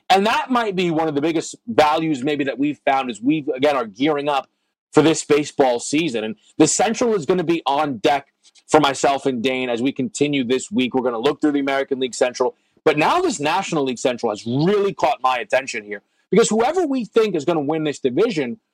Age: 30-49